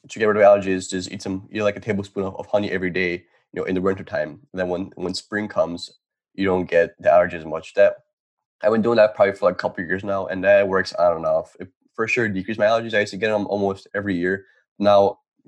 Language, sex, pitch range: English, male, 90-105 Hz